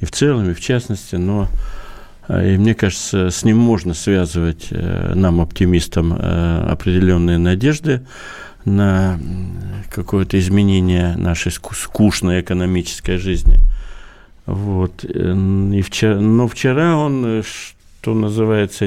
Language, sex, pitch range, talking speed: Russian, male, 90-110 Hz, 100 wpm